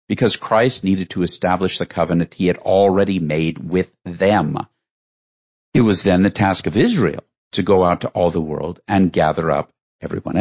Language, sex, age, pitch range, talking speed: English, male, 50-69, 85-115 Hz, 180 wpm